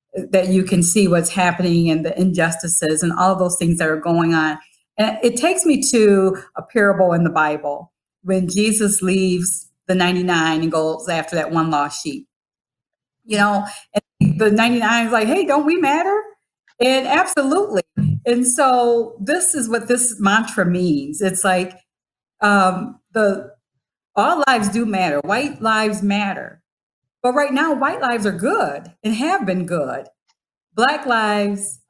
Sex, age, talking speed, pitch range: female, 40-59, 160 wpm, 185-250 Hz